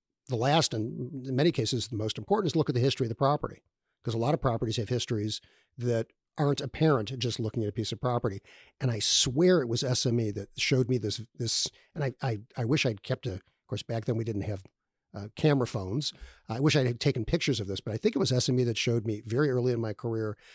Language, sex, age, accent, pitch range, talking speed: English, male, 50-69, American, 110-135 Hz, 250 wpm